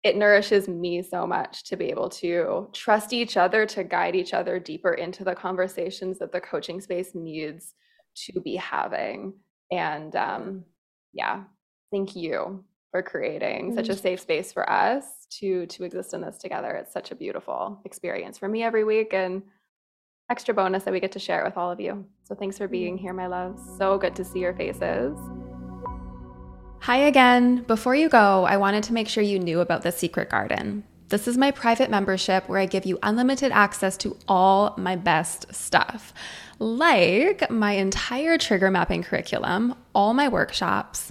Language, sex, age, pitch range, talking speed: English, female, 20-39, 185-220 Hz, 180 wpm